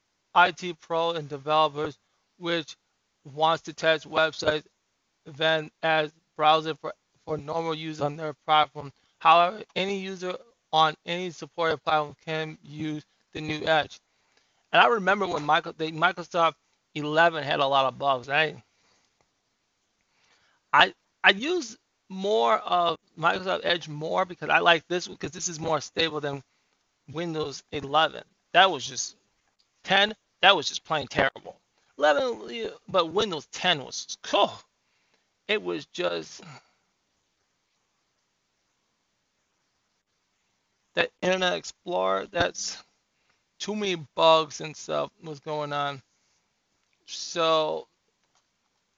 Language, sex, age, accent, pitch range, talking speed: English, male, 20-39, American, 150-170 Hz, 115 wpm